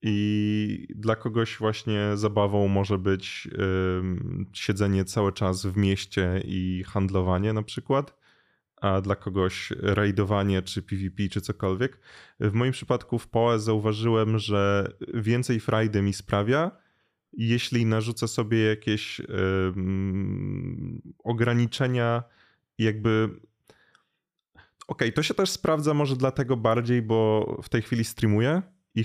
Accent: native